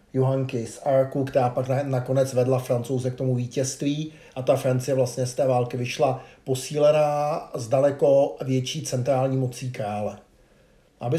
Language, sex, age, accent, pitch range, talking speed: Czech, male, 50-69, native, 130-150 Hz, 145 wpm